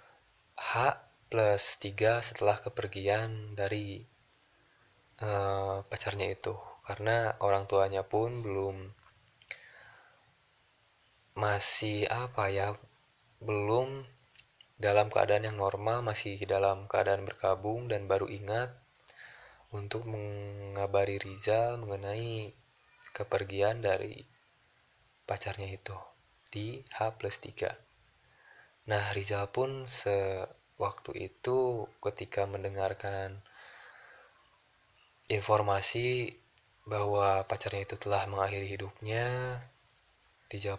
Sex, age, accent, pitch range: male, 20-39, native, 100-115 Hz